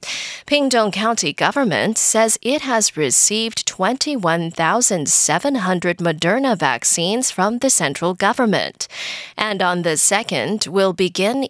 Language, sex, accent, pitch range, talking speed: English, female, American, 170-235 Hz, 105 wpm